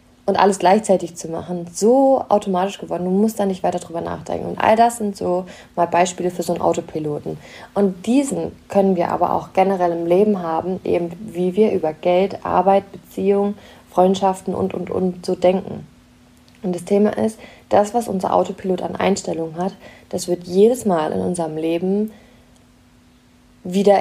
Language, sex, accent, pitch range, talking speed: German, female, German, 180-220 Hz, 170 wpm